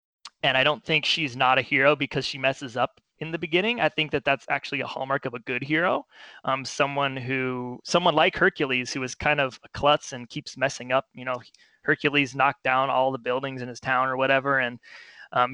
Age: 20-39